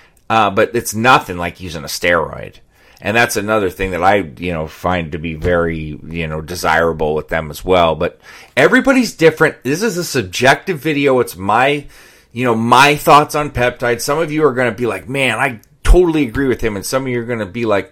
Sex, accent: male, American